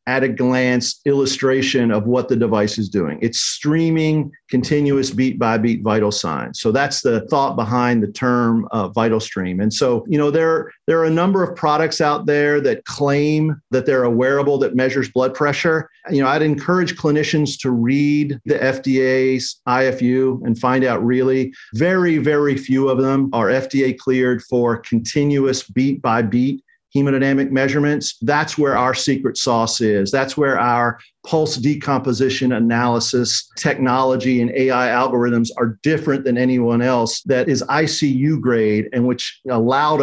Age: 50-69